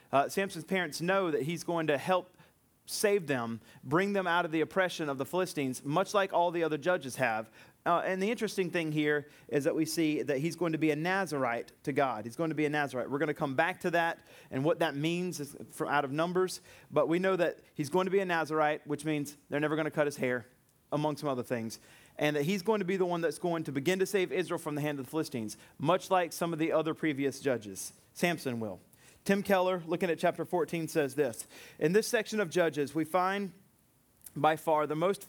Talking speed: 235 wpm